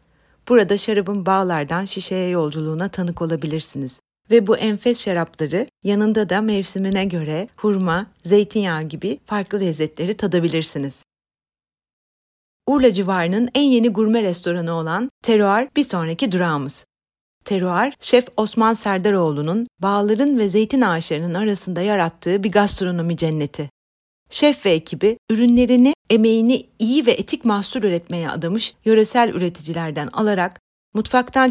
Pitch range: 175-230 Hz